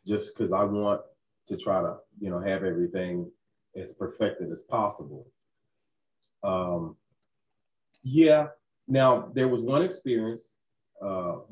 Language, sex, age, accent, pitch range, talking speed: English, male, 30-49, American, 95-120 Hz, 120 wpm